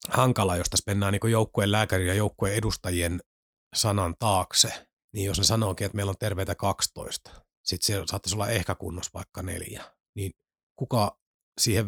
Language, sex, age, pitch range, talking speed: Finnish, male, 30-49, 100-115 Hz, 150 wpm